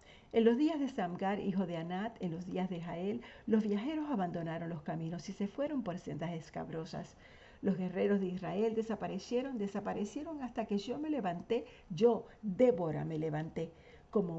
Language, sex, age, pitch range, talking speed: Spanish, female, 50-69, 175-215 Hz, 165 wpm